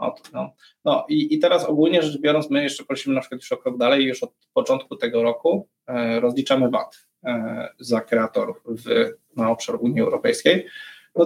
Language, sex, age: Polish, male, 20-39